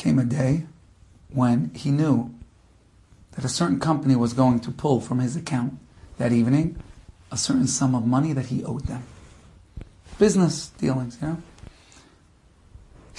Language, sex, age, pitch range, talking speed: English, male, 40-59, 100-160 Hz, 145 wpm